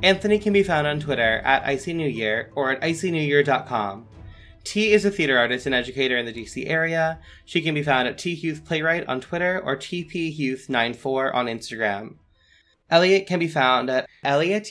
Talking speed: 165 wpm